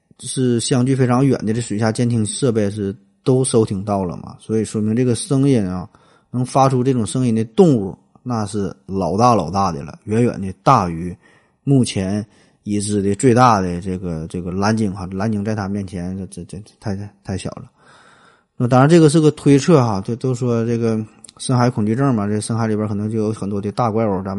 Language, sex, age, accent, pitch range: Chinese, male, 20-39, native, 100-125 Hz